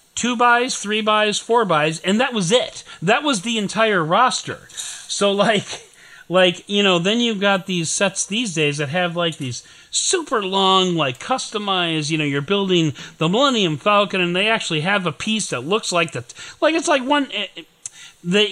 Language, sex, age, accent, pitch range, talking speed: English, male, 40-59, American, 155-210 Hz, 190 wpm